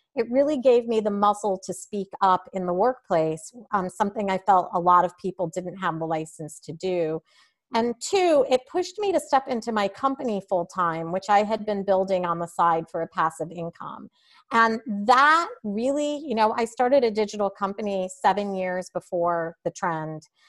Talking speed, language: 185 wpm, English